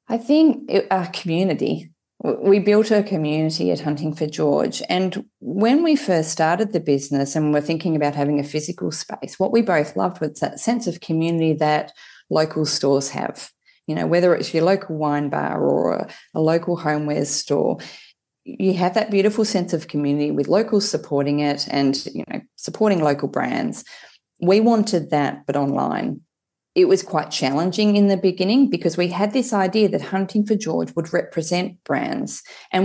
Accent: Australian